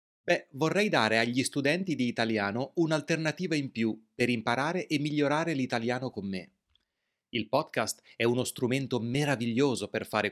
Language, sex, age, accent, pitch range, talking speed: Italian, male, 30-49, native, 110-145 Hz, 145 wpm